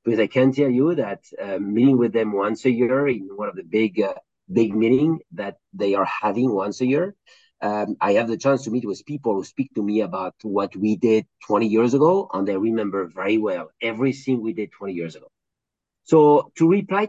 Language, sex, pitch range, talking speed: English, male, 110-145 Hz, 220 wpm